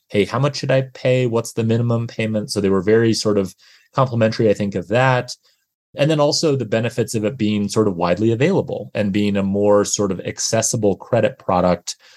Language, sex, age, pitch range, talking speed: English, male, 30-49, 100-120 Hz, 205 wpm